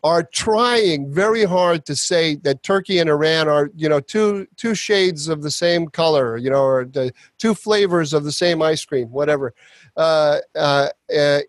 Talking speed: 170 wpm